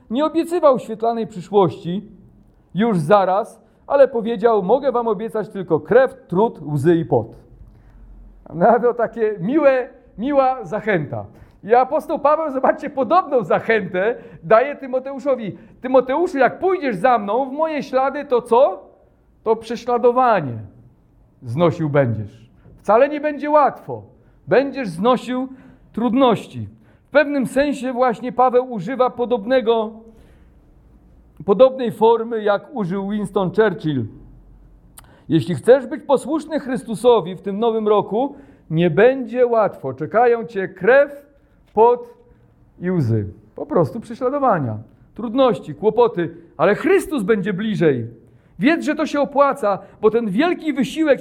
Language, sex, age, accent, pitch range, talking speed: Polish, male, 40-59, native, 185-265 Hz, 115 wpm